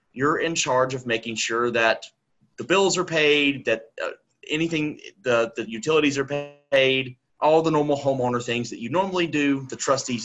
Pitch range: 115-145 Hz